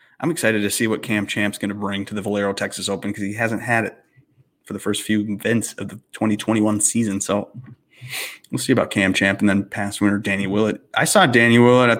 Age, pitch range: 30-49, 105-150 Hz